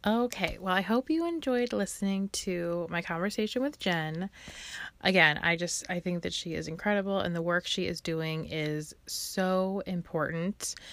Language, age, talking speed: English, 20-39, 165 wpm